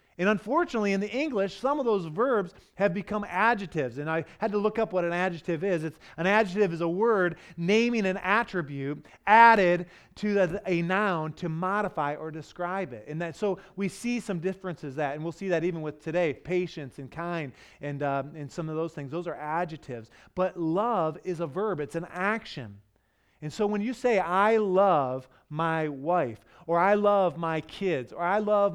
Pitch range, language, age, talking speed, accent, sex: 155-205 Hz, English, 30-49, 195 wpm, American, male